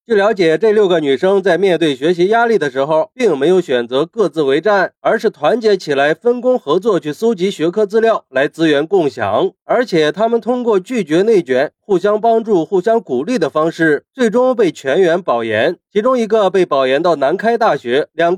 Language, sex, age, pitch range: Chinese, male, 30-49, 160-230 Hz